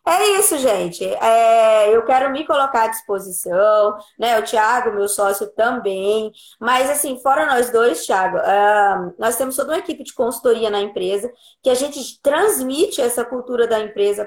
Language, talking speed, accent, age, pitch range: Portuguese, 170 wpm, Brazilian, 20-39, 210-265 Hz